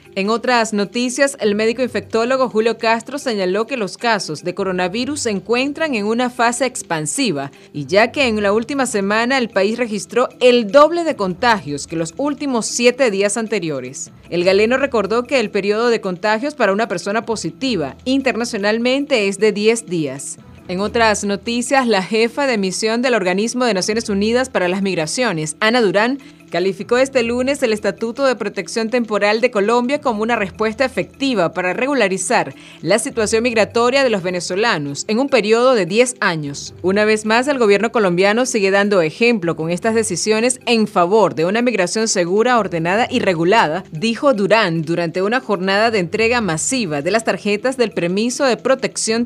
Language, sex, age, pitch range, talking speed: Spanish, female, 30-49, 190-245 Hz, 170 wpm